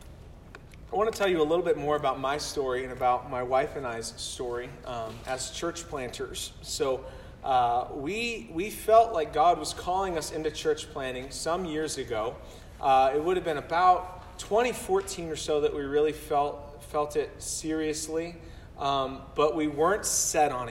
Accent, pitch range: American, 135-195 Hz